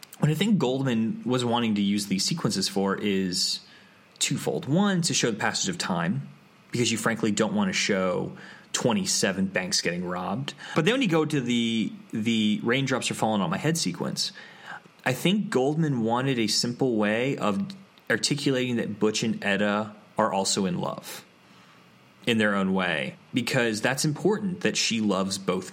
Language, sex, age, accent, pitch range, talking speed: English, male, 20-39, American, 110-170 Hz, 175 wpm